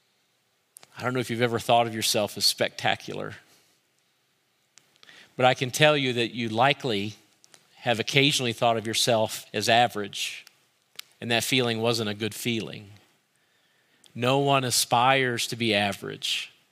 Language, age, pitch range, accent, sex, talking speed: English, 40-59, 110-130 Hz, American, male, 140 wpm